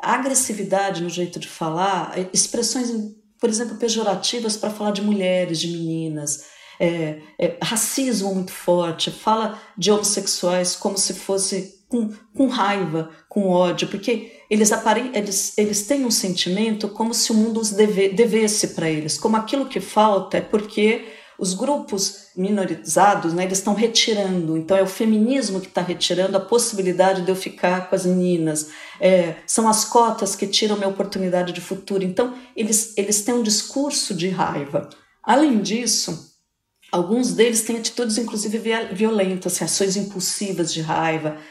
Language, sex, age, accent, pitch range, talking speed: Portuguese, female, 40-59, Brazilian, 180-225 Hz, 145 wpm